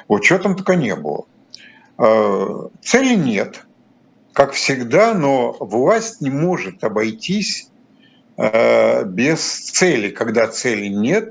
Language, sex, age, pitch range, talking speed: Russian, male, 50-69, 125-210 Hz, 95 wpm